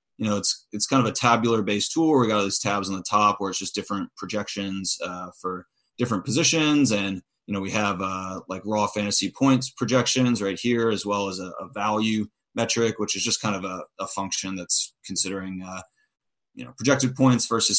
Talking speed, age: 215 wpm, 30-49